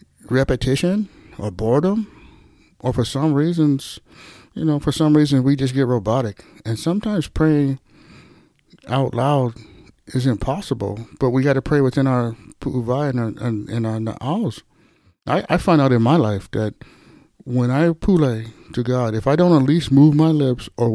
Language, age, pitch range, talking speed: English, 60-79, 115-140 Hz, 170 wpm